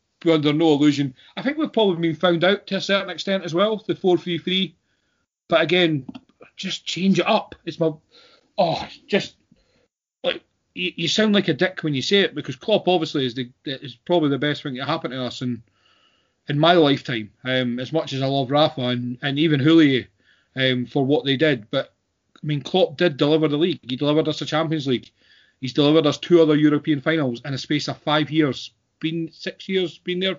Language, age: English, 30-49